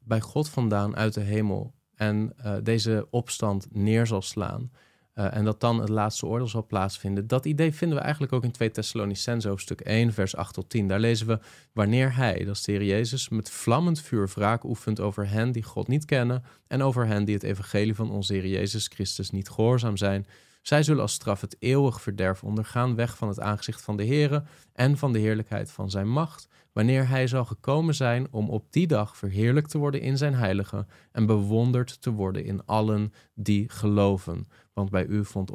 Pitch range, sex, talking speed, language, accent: 105-130 Hz, male, 205 wpm, Dutch, Dutch